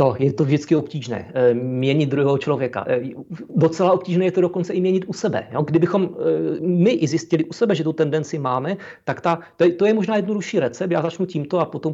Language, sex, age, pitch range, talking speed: Czech, male, 40-59, 145-185 Hz, 190 wpm